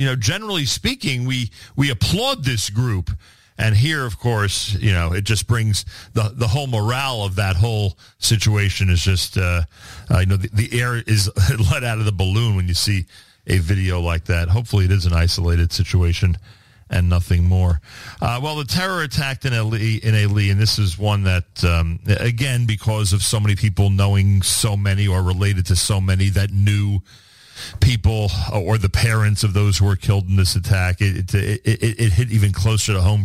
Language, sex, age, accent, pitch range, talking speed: English, male, 40-59, American, 95-115 Hz, 195 wpm